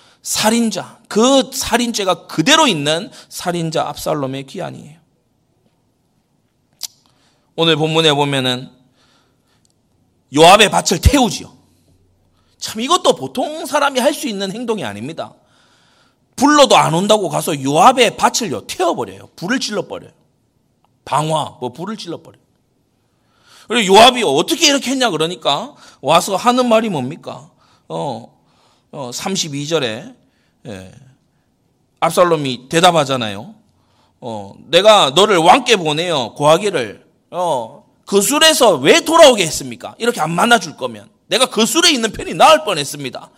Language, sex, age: Korean, male, 40-59